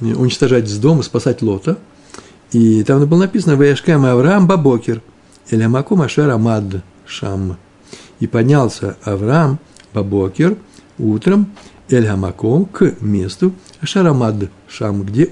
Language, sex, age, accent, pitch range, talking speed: Russian, male, 60-79, native, 100-150 Hz, 100 wpm